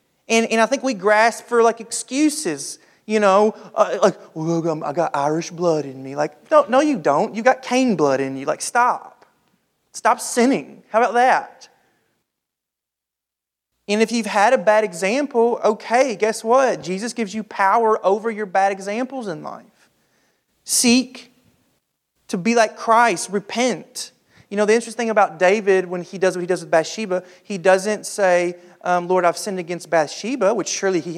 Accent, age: American, 30-49